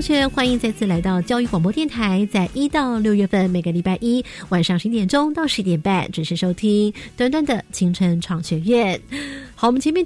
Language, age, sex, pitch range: Chinese, 30-49, female, 175-250 Hz